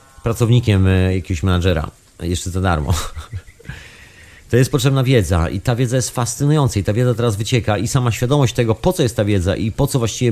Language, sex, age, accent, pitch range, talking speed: Polish, male, 40-59, native, 95-115 Hz, 190 wpm